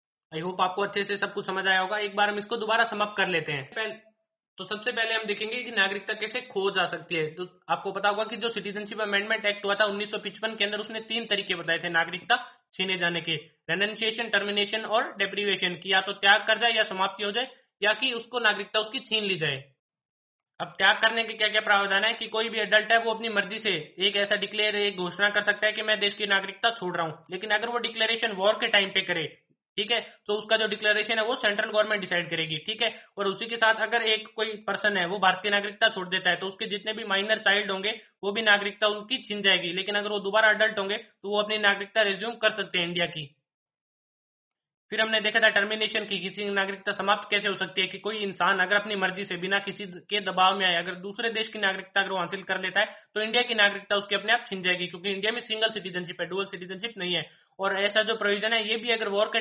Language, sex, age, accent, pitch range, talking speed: Hindi, male, 20-39, native, 190-220 Hz, 245 wpm